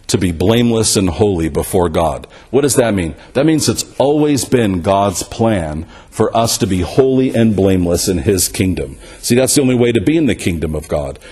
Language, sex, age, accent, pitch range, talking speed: English, male, 50-69, American, 100-135 Hz, 210 wpm